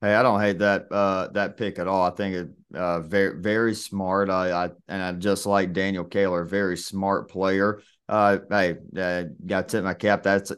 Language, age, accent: English, 30-49, American